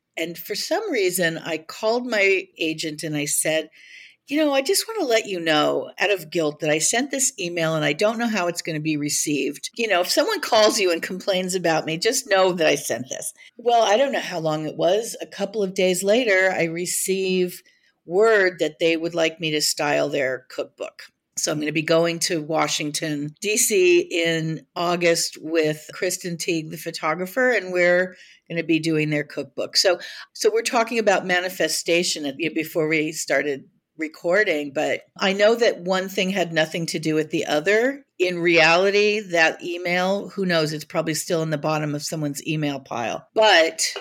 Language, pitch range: English, 160-195 Hz